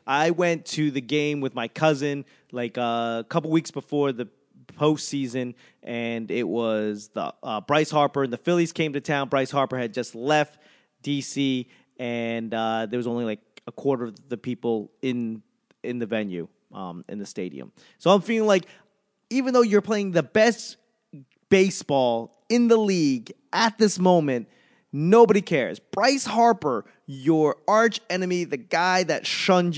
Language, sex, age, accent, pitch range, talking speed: English, male, 30-49, American, 125-180 Hz, 165 wpm